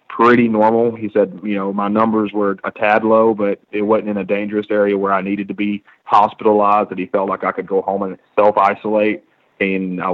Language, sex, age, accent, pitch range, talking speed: English, male, 30-49, American, 95-105 Hz, 220 wpm